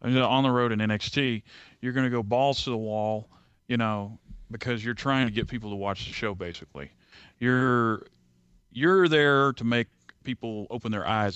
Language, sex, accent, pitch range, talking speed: English, male, American, 110-130 Hz, 180 wpm